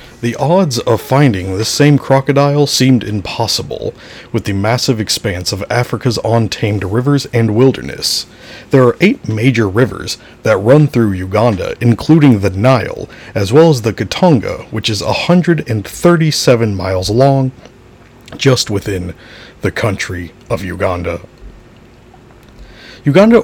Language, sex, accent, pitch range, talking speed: English, male, American, 100-130 Hz, 125 wpm